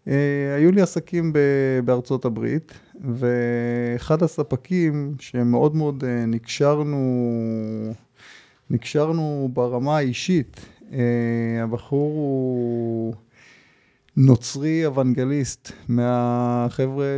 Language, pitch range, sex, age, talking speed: Hebrew, 120-150 Hz, male, 20-39, 65 wpm